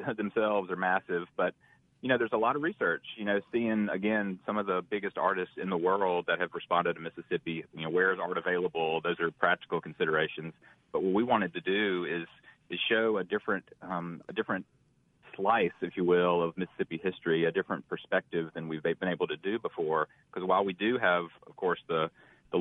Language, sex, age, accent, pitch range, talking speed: English, male, 30-49, American, 85-95 Hz, 205 wpm